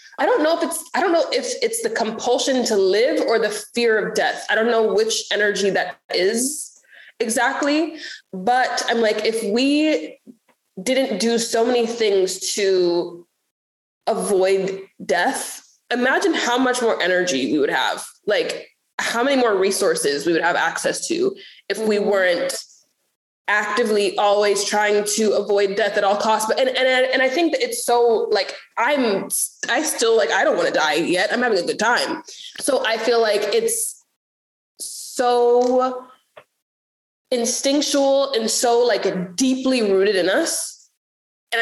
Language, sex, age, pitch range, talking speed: English, female, 20-39, 205-295 Hz, 160 wpm